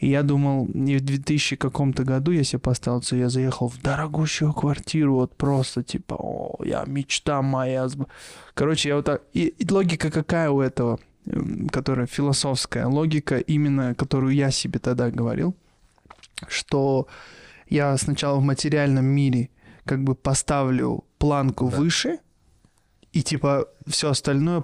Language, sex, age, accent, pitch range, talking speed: Russian, male, 20-39, native, 130-150 Hz, 140 wpm